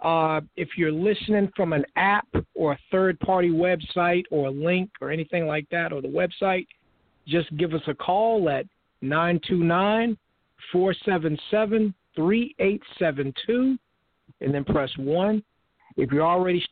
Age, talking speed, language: 50-69, 125 wpm, English